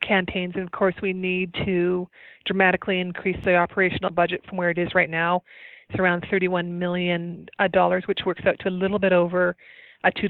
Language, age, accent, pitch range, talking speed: English, 20-39, American, 185-200 Hz, 185 wpm